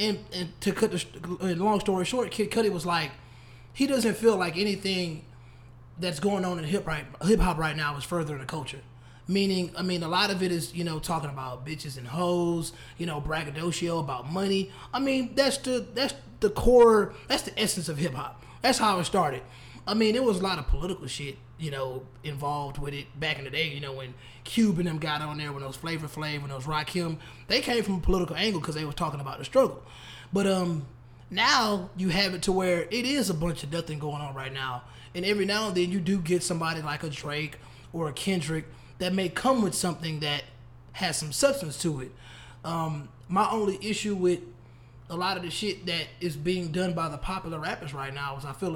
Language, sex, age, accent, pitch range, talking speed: English, male, 20-39, American, 140-190 Hz, 225 wpm